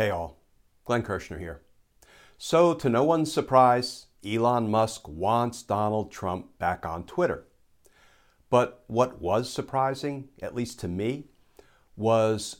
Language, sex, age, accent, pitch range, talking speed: English, male, 60-79, American, 95-135 Hz, 130 wpm